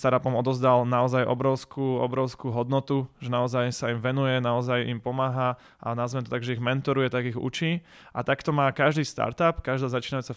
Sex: male